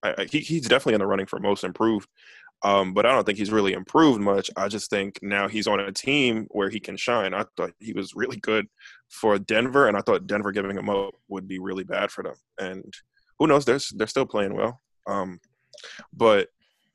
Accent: American